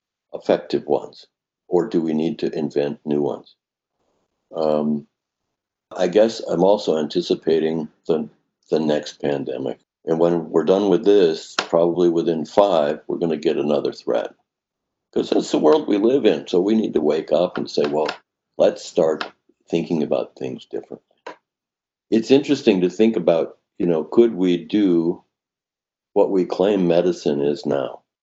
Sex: male